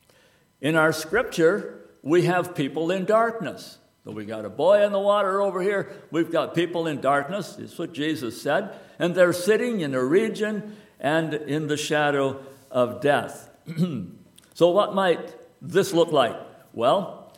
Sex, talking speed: male, 155 wpm